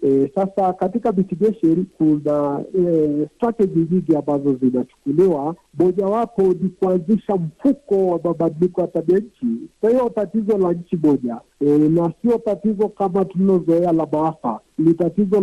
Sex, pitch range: male, 155-200 Hz